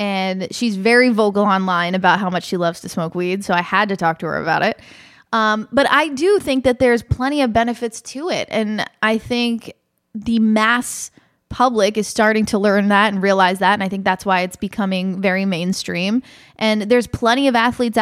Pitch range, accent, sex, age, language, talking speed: 200-250 Hz, American, female, 20-39, English, 205 wpm